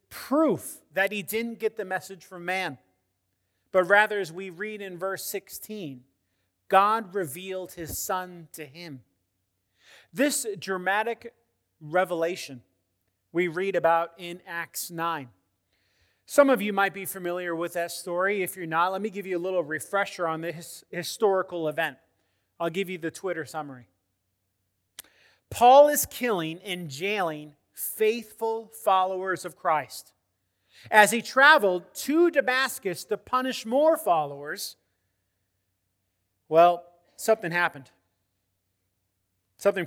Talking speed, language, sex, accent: 125 wpm, English, male, American